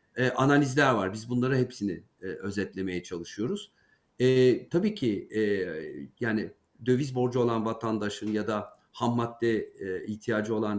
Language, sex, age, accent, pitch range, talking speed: Turkish, male, 50-69, native, 105-130 Hz, 135 wpm